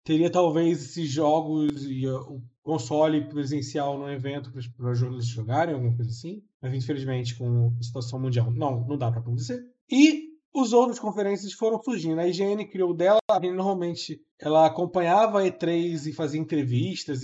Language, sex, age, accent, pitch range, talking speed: Portuguese, male, 20-39, Brazilian, 130-180 Hz, 165 wpm